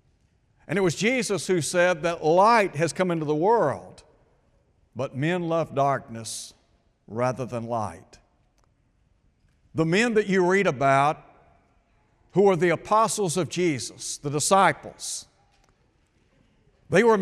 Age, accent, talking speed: 60-79, American, 125 wpm